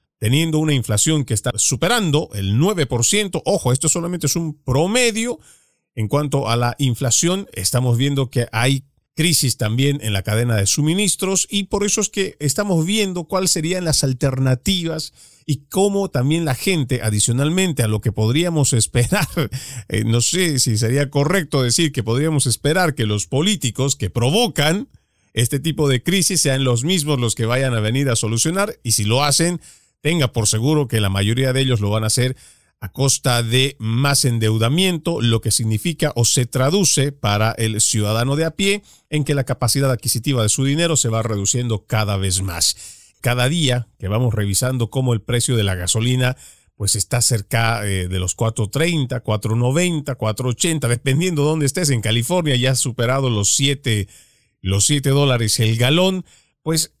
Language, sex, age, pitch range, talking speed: Spanish, male, 40-59, 115-155 Hz, 175 wpm